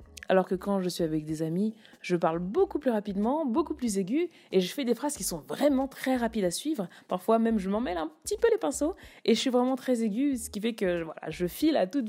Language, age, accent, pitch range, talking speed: French, 20-39, French, 170-230 Hz, 265 wpm